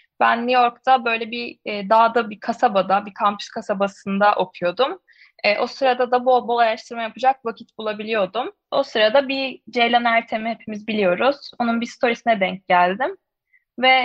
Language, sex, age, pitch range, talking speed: Turkish, female, 10-29, 200-260 Hz, 155 wpm